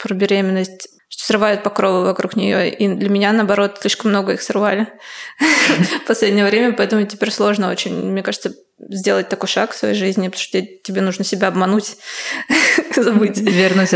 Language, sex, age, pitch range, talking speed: Russian, female, 20-39, 190-225 Hz, 165 wpm